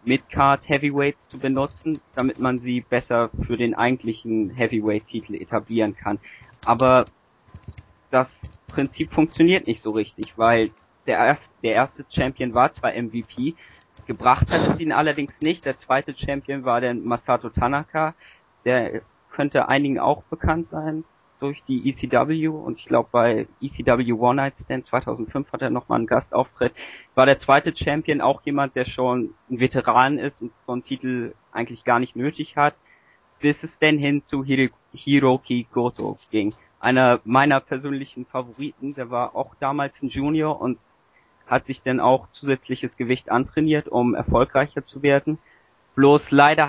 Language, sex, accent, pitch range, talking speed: German, male, German, 120-145 Hz, 150 wpm